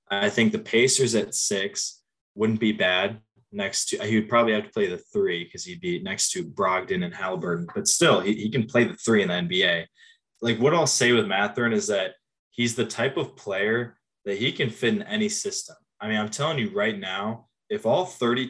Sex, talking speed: male, 220 wpm